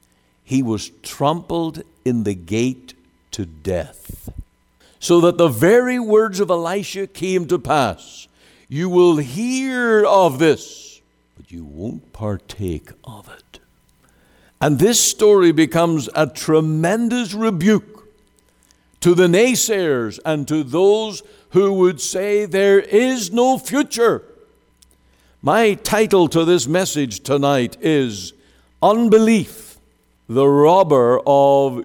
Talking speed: 115 wpm